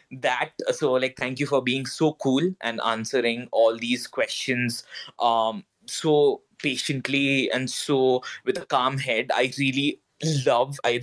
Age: 20-39